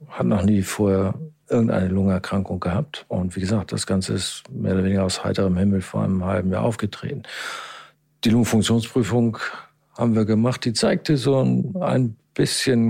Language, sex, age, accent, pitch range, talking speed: German, male, 50-69, German, 95-115 Hz, 165 wpm